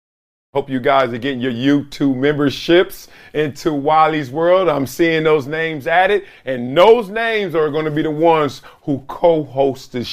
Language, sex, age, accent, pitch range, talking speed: English, male, 40-59, American, 130-200 Hz, 165 wpm